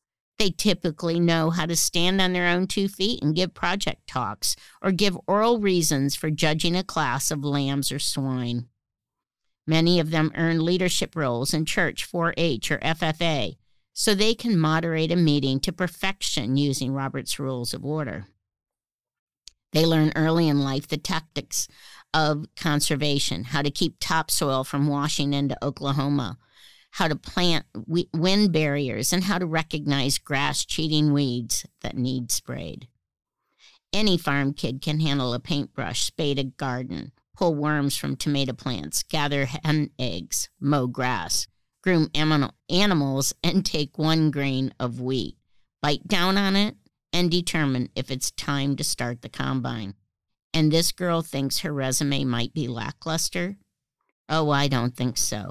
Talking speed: 150 wpm